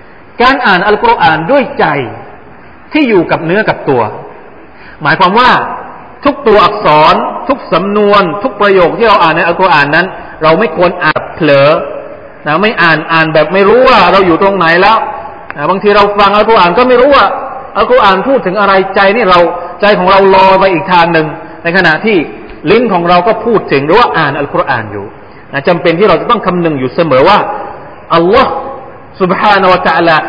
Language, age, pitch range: Thai, 30-49, 170-225 Hz